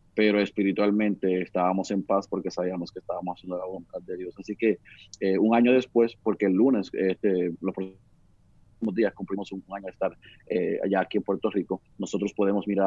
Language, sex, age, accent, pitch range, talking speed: Spanish, male, 30-49, Venezuelan, 95-105 Hz, 190 wpm